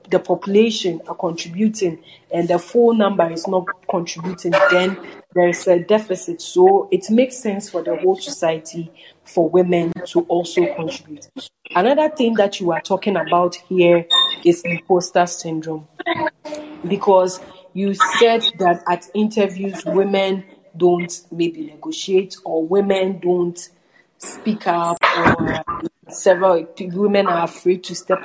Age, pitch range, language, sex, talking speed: 40-59, 175-210 Hz, English, female, 130 wpm